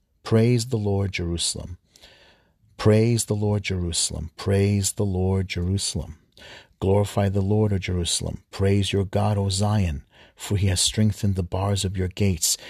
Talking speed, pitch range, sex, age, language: 145 wpm, 90-105 Hz, male, 50-69, English